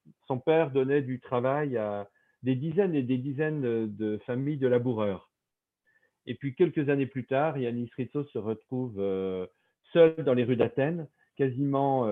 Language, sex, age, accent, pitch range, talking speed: French, male, 40-59, French, 110-135 Hz, 155 wpm